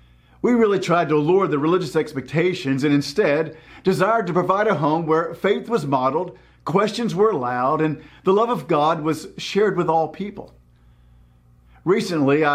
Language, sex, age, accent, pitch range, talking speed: English, male, 50-69, American, 135-195 Hz, 160 wpm